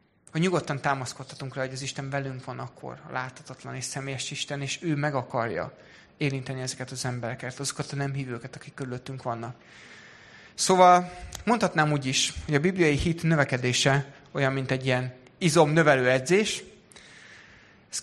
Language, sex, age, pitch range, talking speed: Hungarian, male, 30-49, 135-165 Hz, 155 wpm